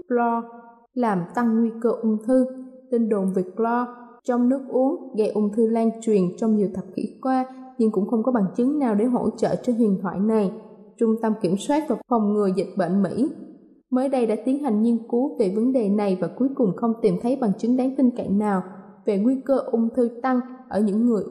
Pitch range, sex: 215-260 Hz, female